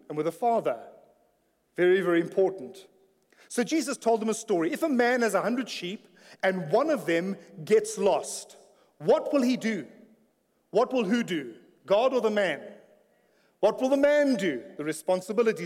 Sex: male